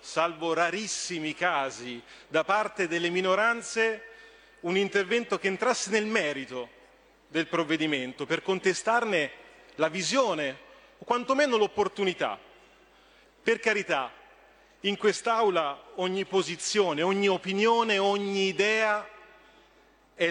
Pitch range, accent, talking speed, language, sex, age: 180-225 Hz, native, 100 wpm, Italian, male, 40-59